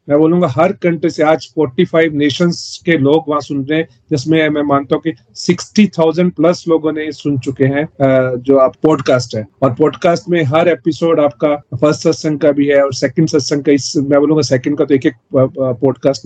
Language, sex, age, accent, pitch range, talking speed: Hindi, male, 40-59, native, 135-155 Hz, 190 wpm